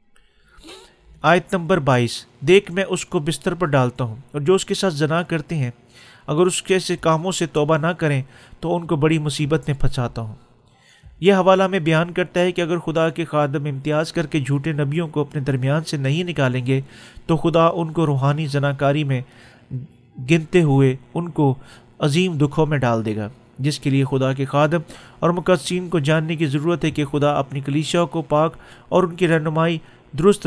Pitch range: 130-170 Hz